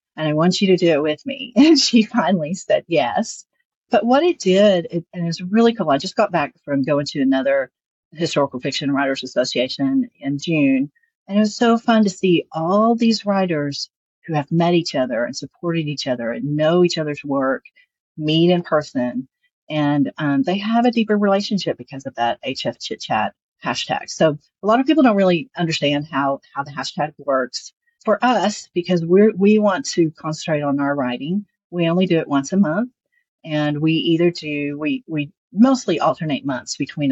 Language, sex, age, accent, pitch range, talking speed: English, female, 40-59, American, 140-200 Hz, 190 wpm